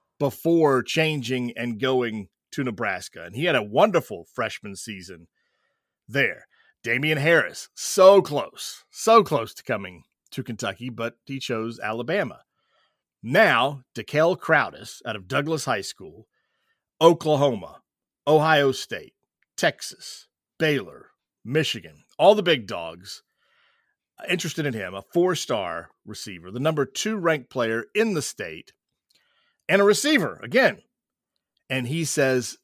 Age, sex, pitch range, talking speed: 30-49, male, 120-170 Hz, 125 wpm